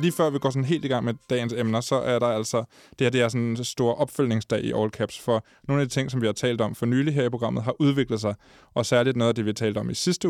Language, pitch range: Danish, 110-130 Hz